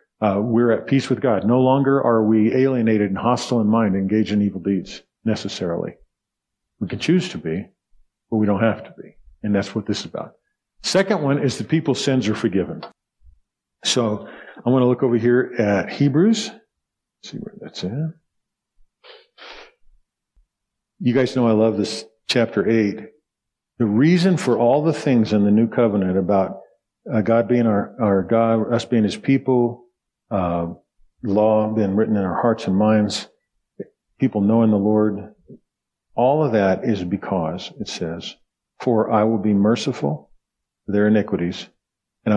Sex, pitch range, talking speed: male, 100-120 Hz, 165 wpm